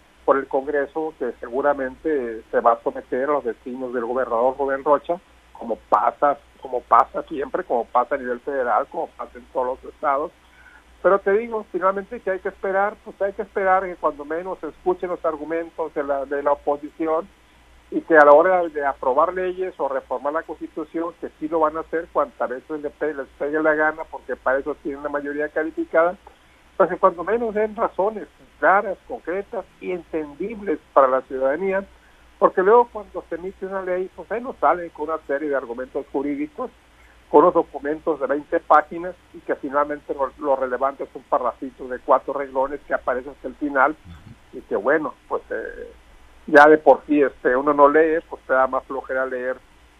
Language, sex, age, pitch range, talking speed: Spanish, male, 50-69, 135-185 Hz, 190 wpm